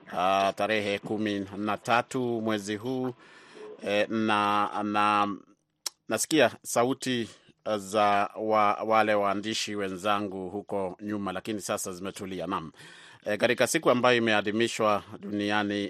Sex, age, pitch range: male, 30-49, 100-115 Hz